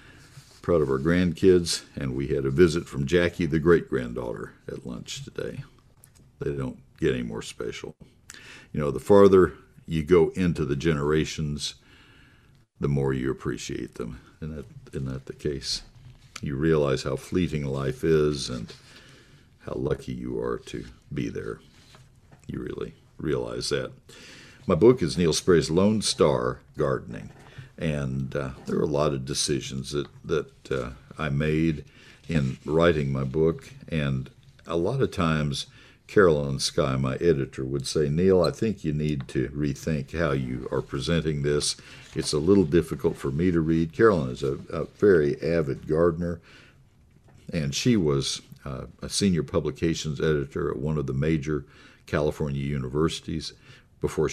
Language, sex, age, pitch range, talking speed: English, male, 60-79, 70-85 Hz, 150 wpm